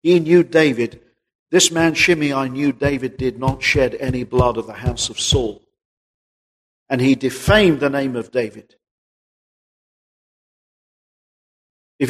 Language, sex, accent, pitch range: English, male, British, 115-155 Hz